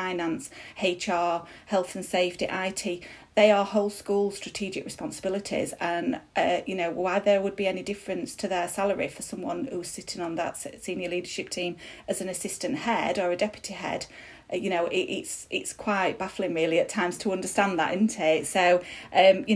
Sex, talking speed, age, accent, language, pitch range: female, 185 wpm, 30-49, British, English, 165-200 Hz